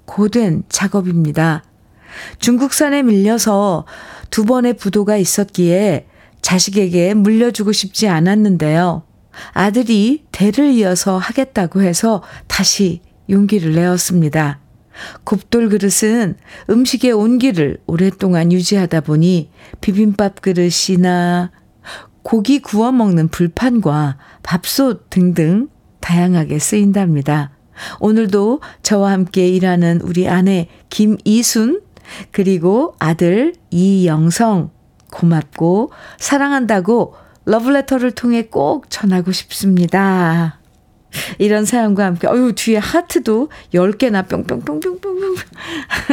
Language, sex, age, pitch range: Korean, female, 50-69, 175-225 Hz